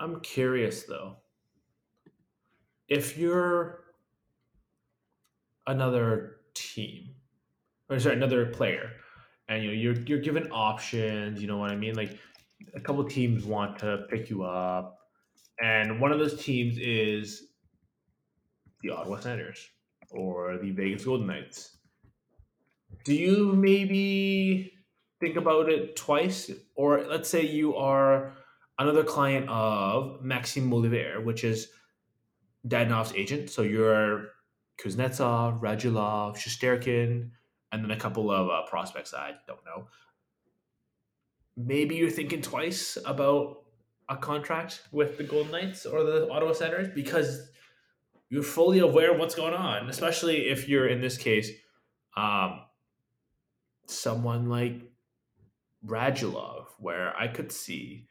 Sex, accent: male, American